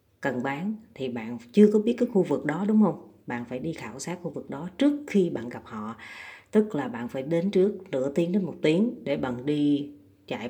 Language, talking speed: Vietnamese, 235 wpm